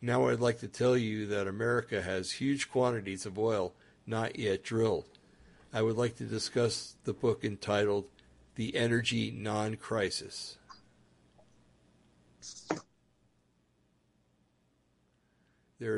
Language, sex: English, male